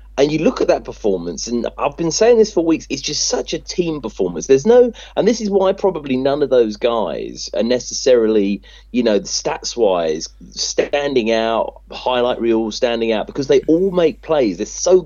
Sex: male